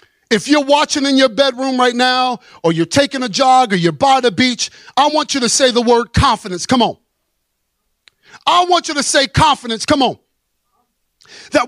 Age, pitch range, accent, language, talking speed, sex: 50-69, 245-320 Hz, American, English, 190 wpm, male